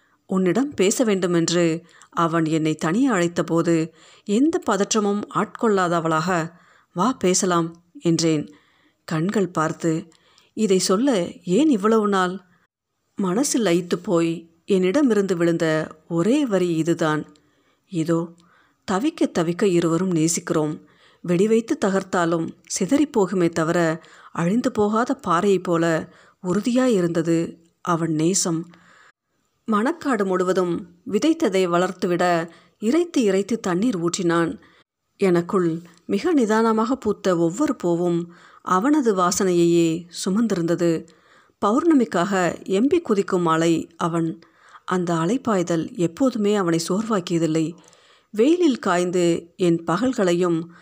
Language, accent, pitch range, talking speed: Tamil, native, 170-215 Hz, 85 wpm